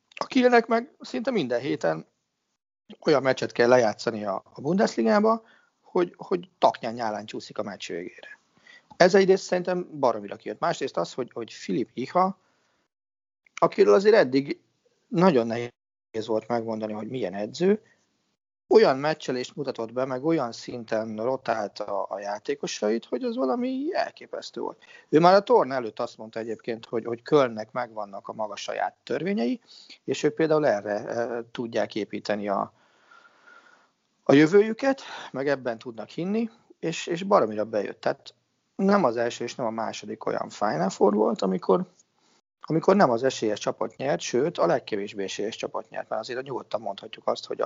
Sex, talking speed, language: male, 150 wpm, Hungarian